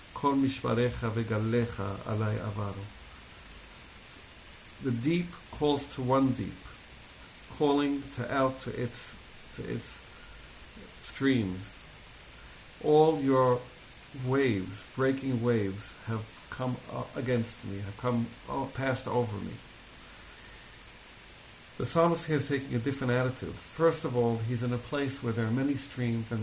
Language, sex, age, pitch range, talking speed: English, male, 60-79, 110-130 Hz, 115 wpm